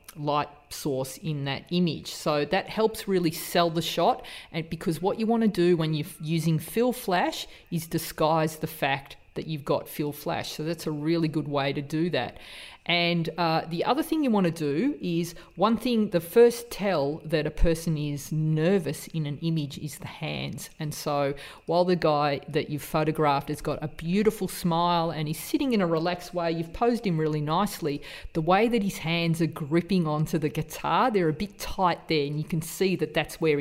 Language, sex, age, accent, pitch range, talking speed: English, female, 40-59, Australian, 155-190 Hz, 205 wpm